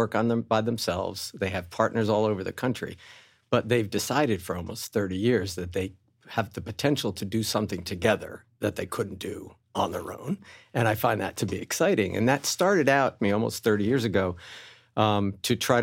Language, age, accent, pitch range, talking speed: English, 50-69, American, 100-115 Hz, 195 wpm